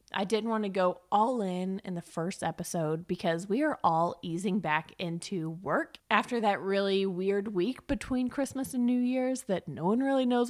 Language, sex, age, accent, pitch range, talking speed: English, female, 20-39, American, 180-235 Hz, 195 wpm